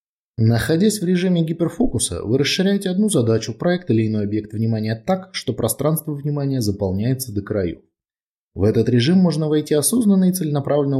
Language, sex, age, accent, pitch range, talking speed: Russian, male, 20-39, native, 100-150 Hz, 155 wpm